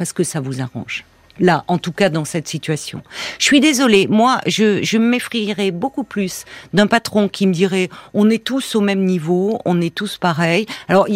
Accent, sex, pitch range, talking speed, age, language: French, female, 180-225 Hz, 205 wpm, 50-69, French